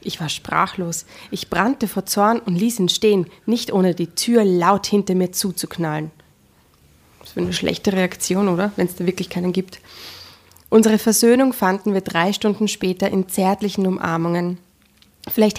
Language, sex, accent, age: German, female, German, 20-39